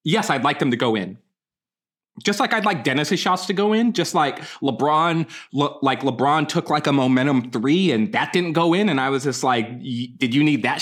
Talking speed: 225 wpm